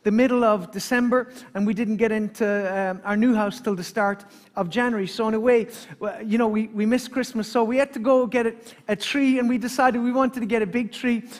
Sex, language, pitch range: male, English, 220-255 Hz